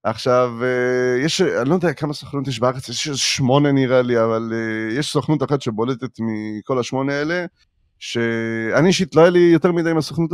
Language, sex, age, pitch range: Hebrew, male, 30-49, 125-170 Hz